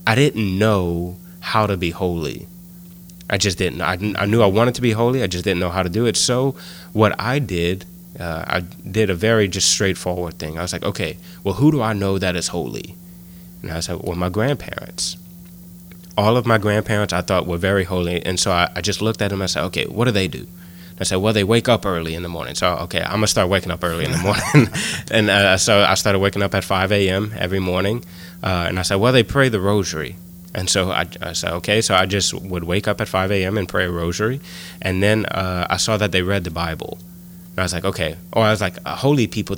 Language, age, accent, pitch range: English, 20-39, American, 90-110 Hz